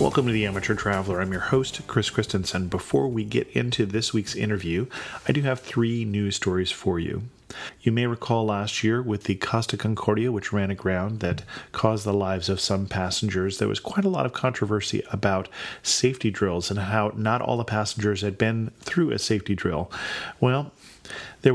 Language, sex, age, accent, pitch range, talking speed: English, male, 40-59, American, 100-125 Hz, 190 wpm